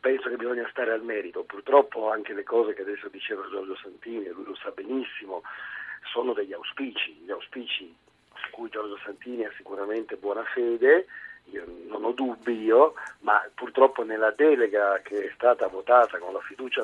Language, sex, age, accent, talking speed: Italian, male, 50-69, native, 170 wpm